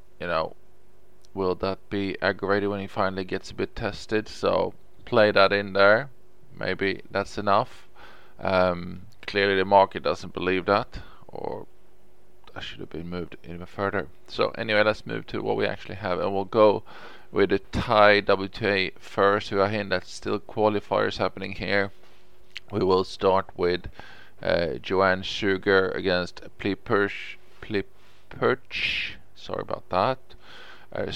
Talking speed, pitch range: 145 wpm, 90-105 Hz